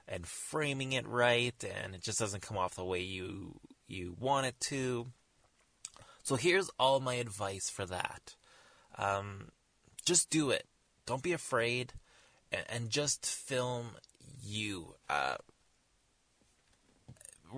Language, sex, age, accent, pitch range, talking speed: English, male, 20-39, American, 95-125 Hz, 125 wpm